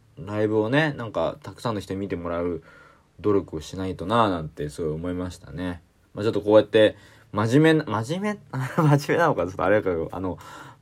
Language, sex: Japanese, male